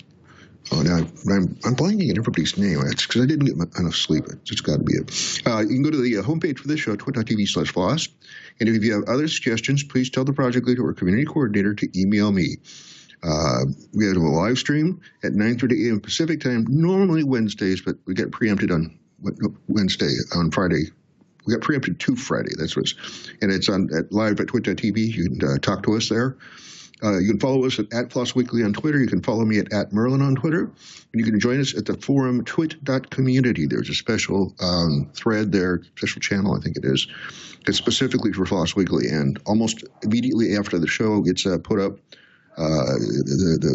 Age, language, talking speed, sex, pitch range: 50-69, English, 205 wpm, male, 95-130 Hz